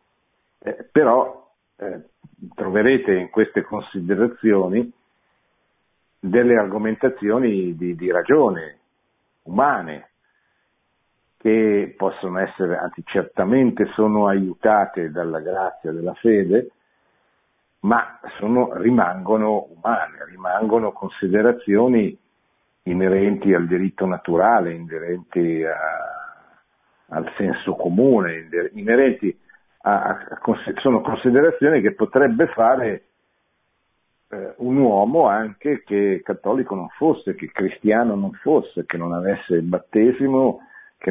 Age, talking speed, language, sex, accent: 50-69, 90 wpm, Italian, male, native